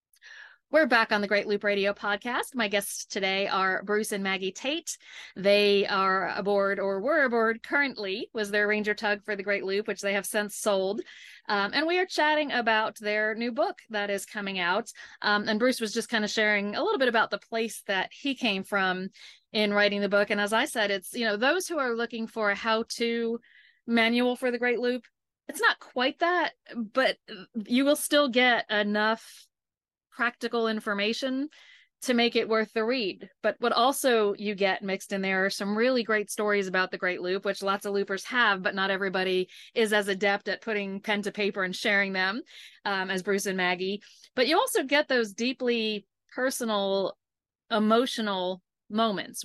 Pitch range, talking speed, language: 200-235 Hz, 190 wpm, English